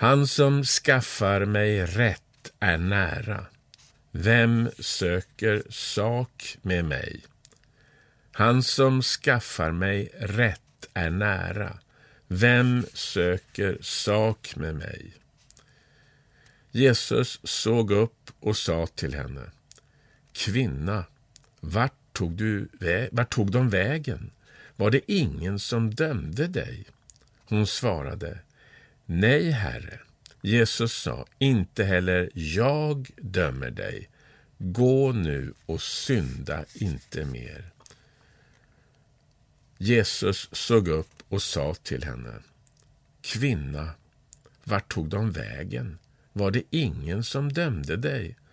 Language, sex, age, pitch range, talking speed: Swedish, male, 50-69, 90-130 Hz, 95 wpm